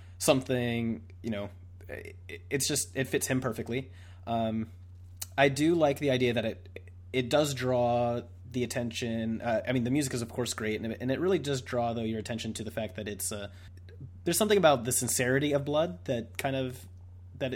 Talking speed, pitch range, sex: 190 wpm, 95-130 Hz, male